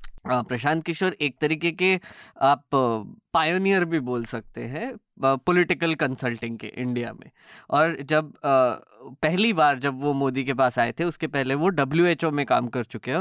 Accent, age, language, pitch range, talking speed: native, 20-39, Hindi, 135-180 Hz, 165 wpm